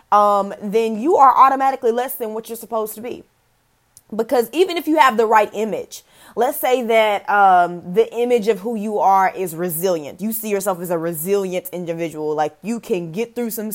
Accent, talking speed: American, 195 wpm